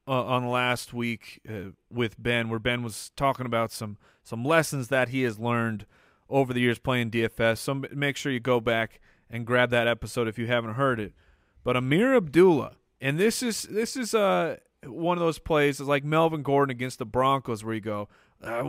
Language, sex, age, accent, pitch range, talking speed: English, male, 30-49, American, 115-145 Hz, 200 wpm